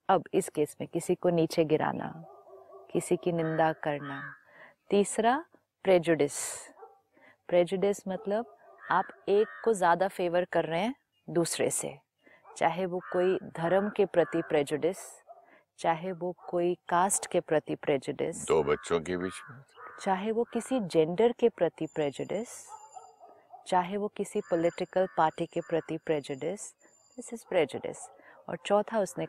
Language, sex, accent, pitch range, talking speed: Hindi, female, native, 165-215 Hz, 135 wpm